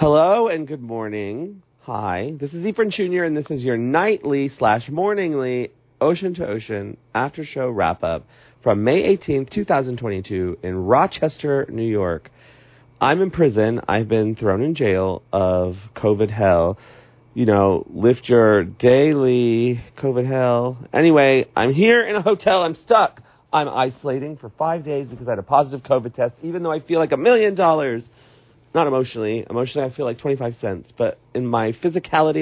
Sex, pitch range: male, 115-155 Hz